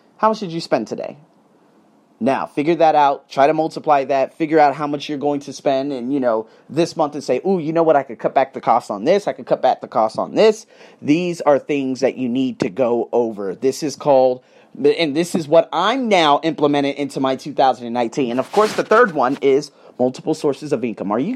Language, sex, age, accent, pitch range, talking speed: English, male, 30-49, American, 140-180 Hz, 235 wpm